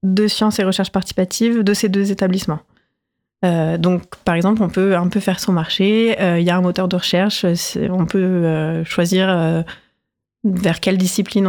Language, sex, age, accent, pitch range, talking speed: French, female, 30-49, French, 175-210 Hz, 190 wpm